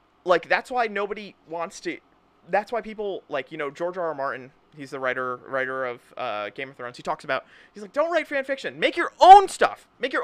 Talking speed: 235 wpm